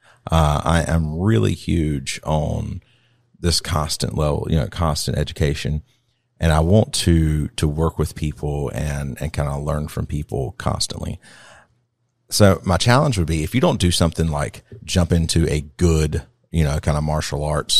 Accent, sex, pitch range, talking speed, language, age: American, male, 75-100 Hz, 165 wpm, English, 40-59